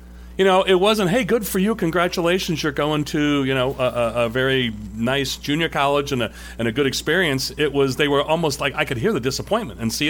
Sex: male